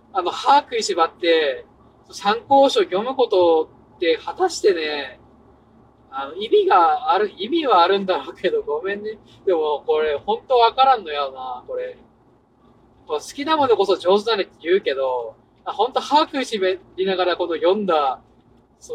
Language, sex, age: Japanese, male, 20-39